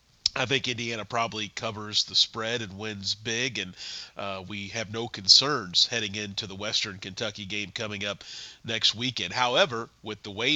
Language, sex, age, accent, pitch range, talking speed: English, male, 40-59, American, 105-130 Hz, 170 wpm